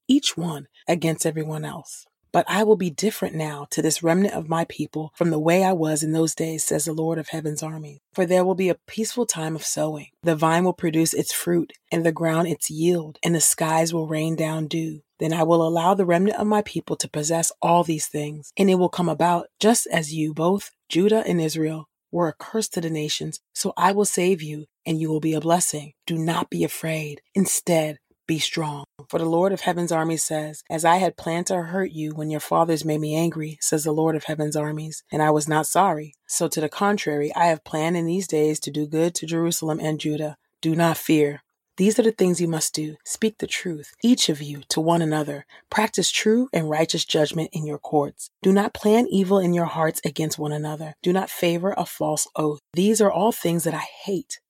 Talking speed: 225 wpm